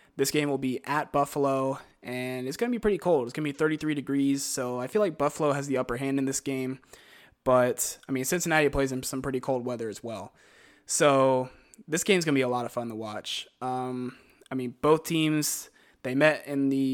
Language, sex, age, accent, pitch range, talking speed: English, male, 20-39, American, 125-140 Hz, 225 wpm